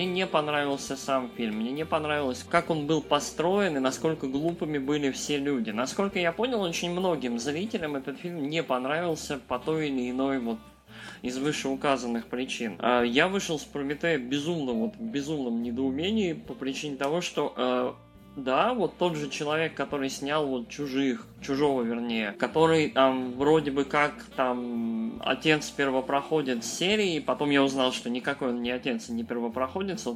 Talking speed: 155 wpm